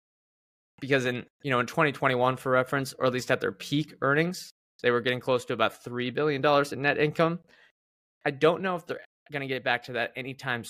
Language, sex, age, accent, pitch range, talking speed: English, male, 20-39, American, 120-145 Hz, 215 wpm